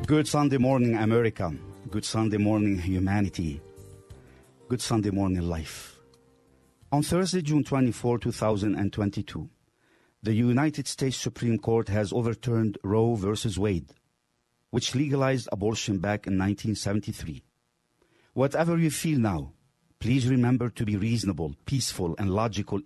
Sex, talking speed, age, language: male, 120 wpm, 50-69, English